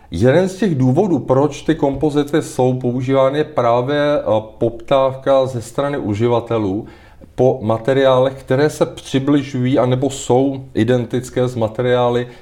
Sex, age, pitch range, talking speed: male, 40-59, 100-125 Hz, 120 wpm